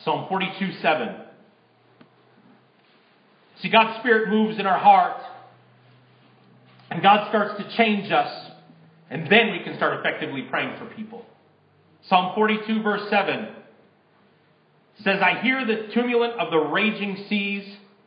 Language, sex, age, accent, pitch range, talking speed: English, male, 40-59, American, 175-210 Hz, 125 wpm